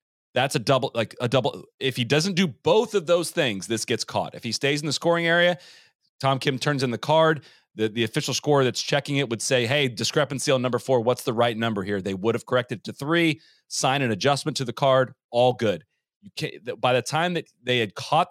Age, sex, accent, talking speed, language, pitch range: 30-49, male, American, 240 wpm, English, 110-150 Hz